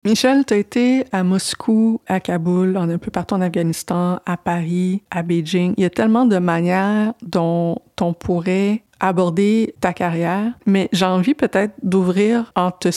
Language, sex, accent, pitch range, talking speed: French, female, Canadian, 170-200 Hz, 170 wpm